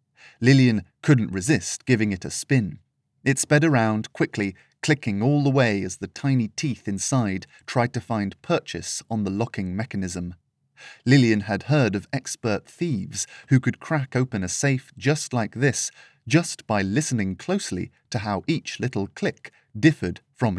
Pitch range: 105-135 Hz